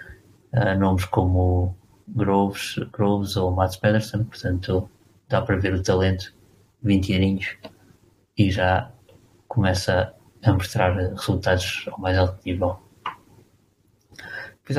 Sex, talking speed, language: male, 100 wpm, Portuguese